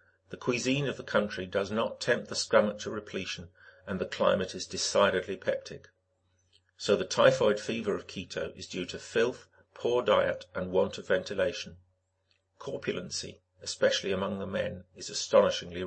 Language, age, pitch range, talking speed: English, 50-69, 95-135 Hz, 155 wpm